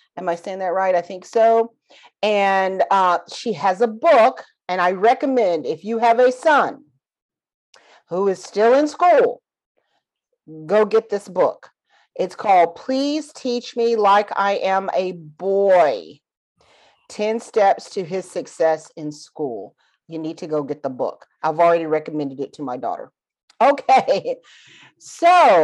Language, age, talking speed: English, 40-59, 150 wpm